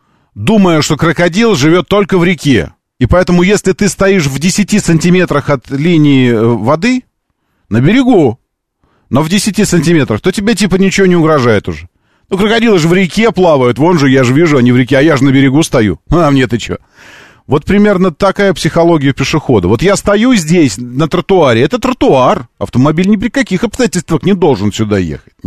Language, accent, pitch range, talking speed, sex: Russian, native, 105-180 Hz, 180 wpm, male